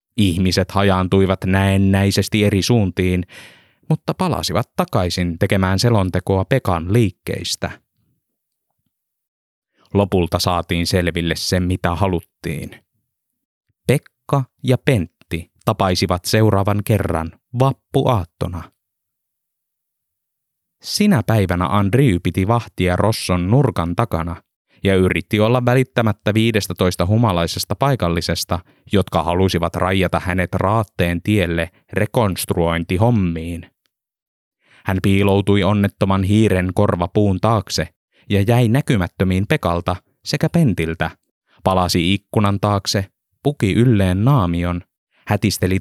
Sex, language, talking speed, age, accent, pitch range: male, Finnish, 85 wpm, 20-39, native, 90-110 Hz